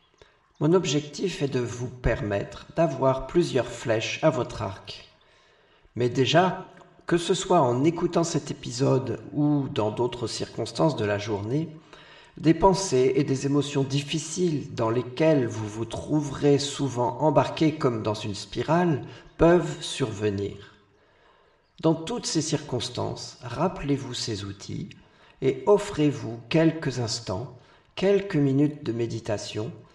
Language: French